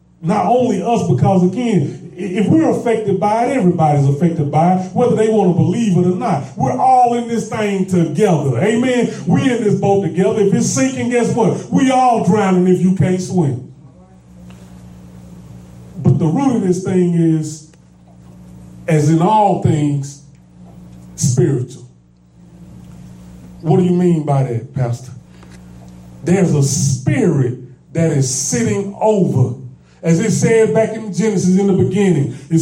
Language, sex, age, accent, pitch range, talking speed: English, male, 30-49, American, 140-200 Hz, 150 wpm